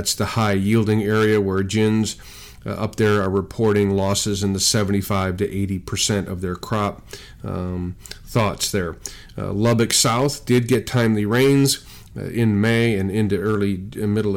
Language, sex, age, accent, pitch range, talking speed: English, male, 40-59, American, 100-115 Hz, 155 wpm